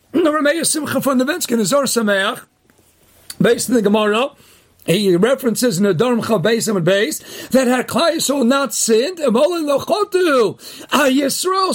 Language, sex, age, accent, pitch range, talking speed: English, male, 40-59, American, 250-340 Hz, 145 wpm